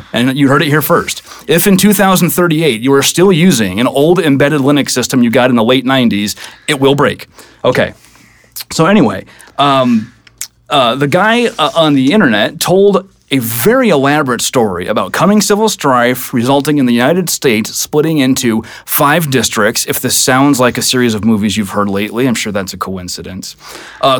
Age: 30-49